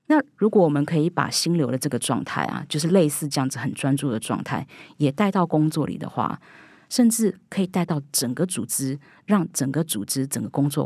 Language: Chinese